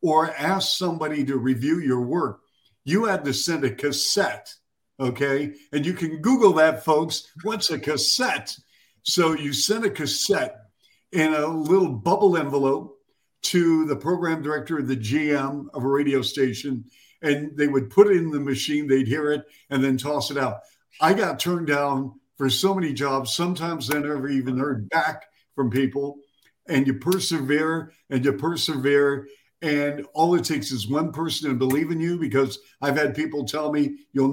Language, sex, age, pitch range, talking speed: English, male, 60-79, 135-165 Hz, 175 wpm